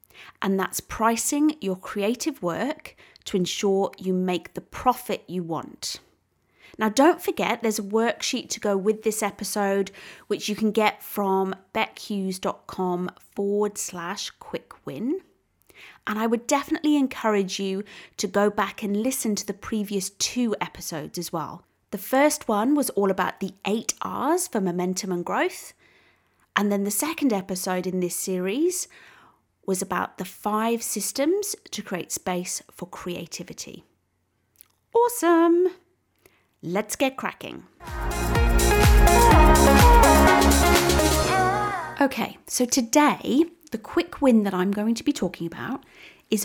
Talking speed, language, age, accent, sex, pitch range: 130 wpm, English, 30-49, British, female, 190-265 Hz